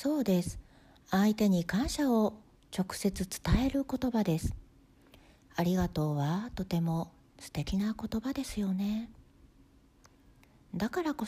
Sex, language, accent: female, Japanese, native